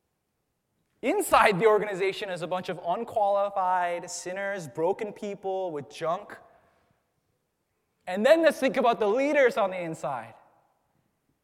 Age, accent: 20-39, American